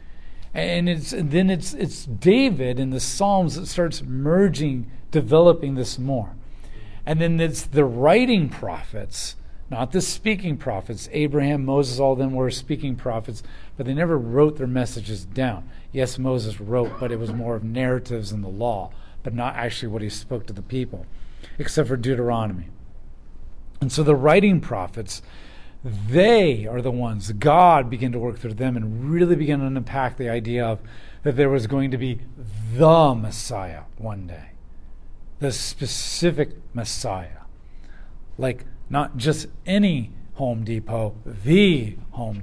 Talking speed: 155 wpm